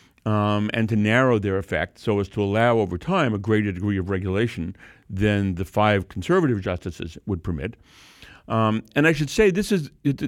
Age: 50-69